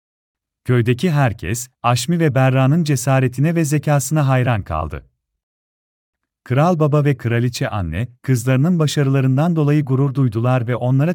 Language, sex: Turkish, male